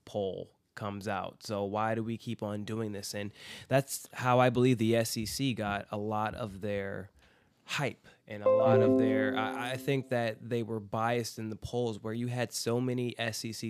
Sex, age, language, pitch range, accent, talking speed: male, 20-39, English, 105-120 Hz, American, 195 wpm